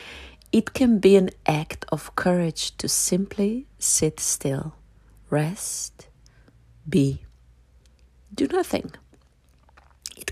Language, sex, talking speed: English, female, 95 wpm